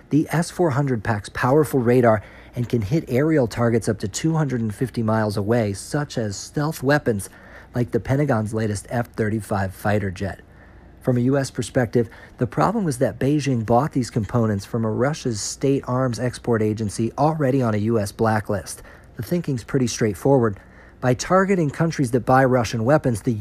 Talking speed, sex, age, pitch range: 160 wpm, male, 50-69, 110-135 Hz